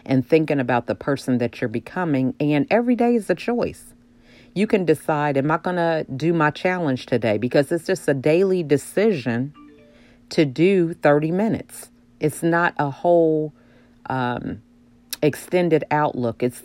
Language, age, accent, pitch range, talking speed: English, 40-59, American, 120-160 Hz, 155 wpm